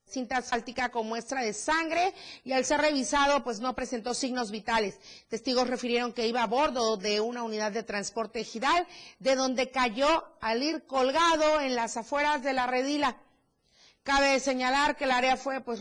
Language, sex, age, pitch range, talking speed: Spanish, female, 40-59, 230-290 Hz, 175 wpm